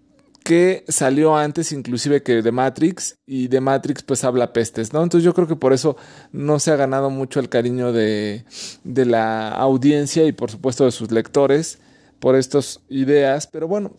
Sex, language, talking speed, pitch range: male, Spanish, 180 wpm, 125-155 Hz